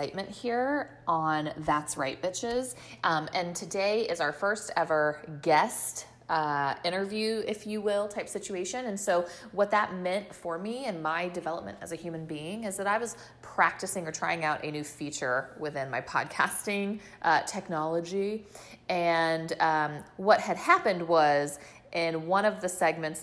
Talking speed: 160 wpm